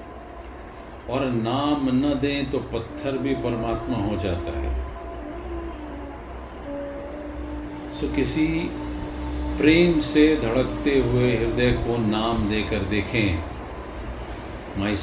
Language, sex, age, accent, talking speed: Hindi, male, 50-69, native, 95 wpm